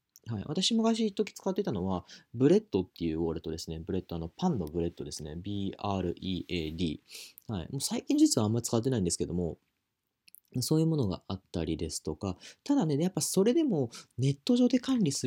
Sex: male